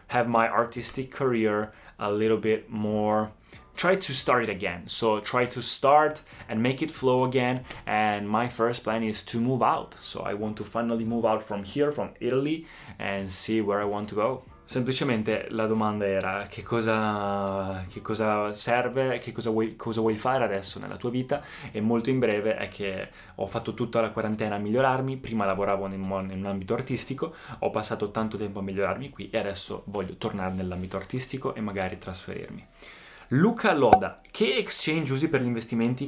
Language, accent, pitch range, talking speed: Italian, native, 105-125 Hz, 185 wpm